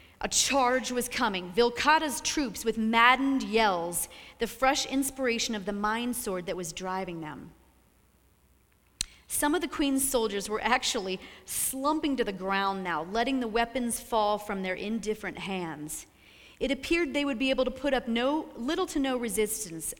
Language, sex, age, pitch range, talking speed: English, female, 40-59, 200-265 Hz, 160 wpm